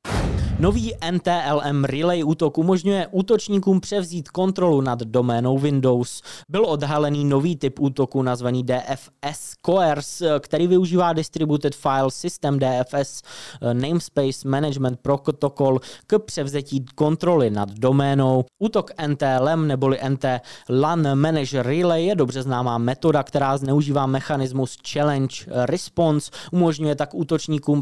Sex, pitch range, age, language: male, 130-155 Hz, 20-39, Czech